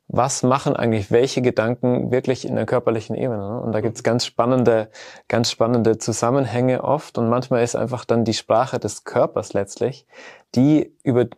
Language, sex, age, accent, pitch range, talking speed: German, male, 20-39, German, 110-125 Hz, 170 wpm